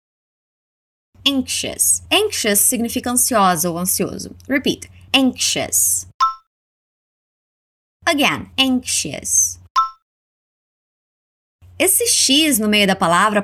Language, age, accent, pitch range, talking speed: Portuguese, 20-39, Brazilian, 185-275 Hz, 70 wpm